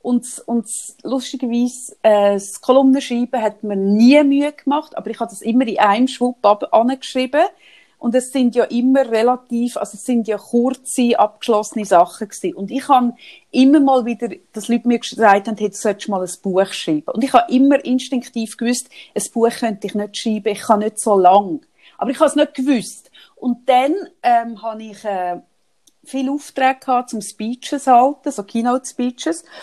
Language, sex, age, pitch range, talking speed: German, female, 30-49, 205-255 Hz, 180 wpm